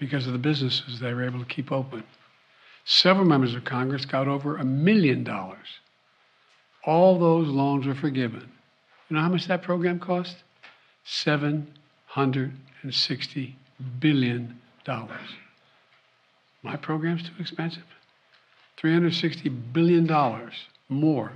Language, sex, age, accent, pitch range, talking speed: English, male, 60-79, American, 130-150 Hz, 110 wpm